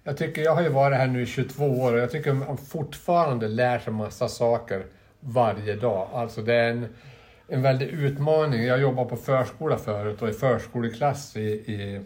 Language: Swedish